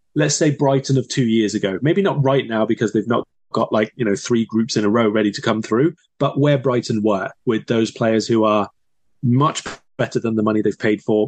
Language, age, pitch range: English, 30-49, 105-130 Hz